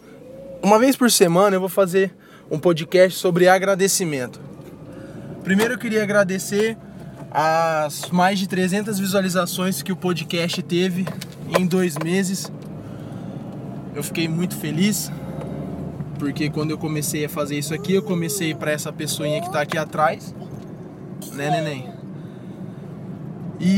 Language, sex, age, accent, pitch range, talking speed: Portuguese, male, 20-39, Brazilian, 160-195 Hz, 130 wpm